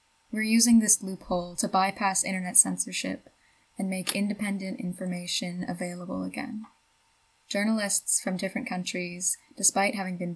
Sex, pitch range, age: female, 180-220 Hz, 10-29